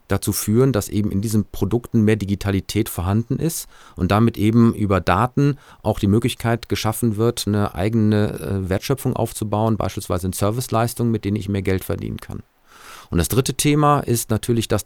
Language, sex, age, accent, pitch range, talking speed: German, male, 40-59, German, 95-115 Hz, 170 wpm